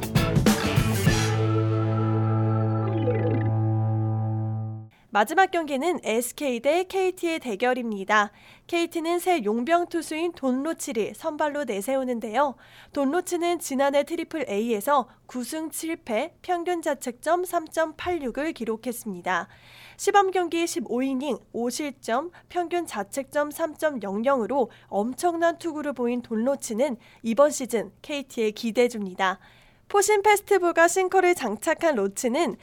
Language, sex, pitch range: Korean, female, 230-335 Hz